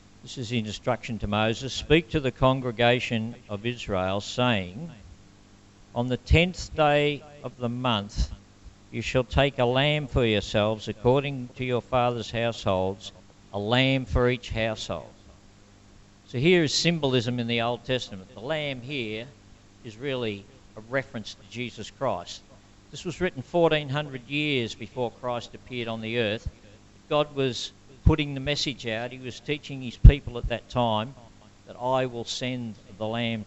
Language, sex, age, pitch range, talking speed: English, male, 50-69, 100-130 Hz, 155 wpm